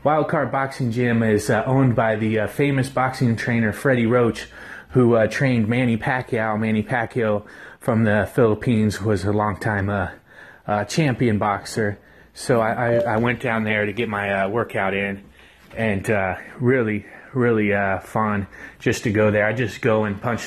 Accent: American